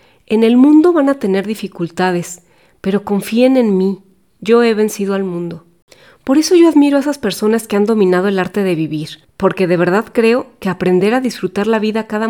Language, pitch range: Spanish, 180-230 Hz